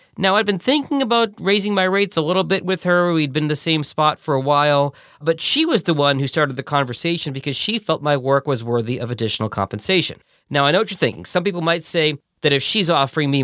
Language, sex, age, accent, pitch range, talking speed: English, male, 40-59, American, 120-170 Hz, 255 wpm